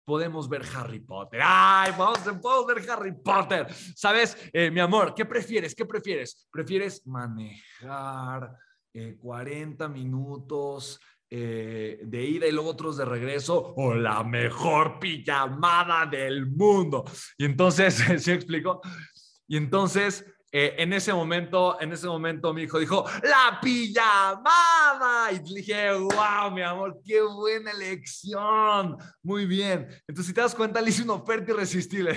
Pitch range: 135-195 Hz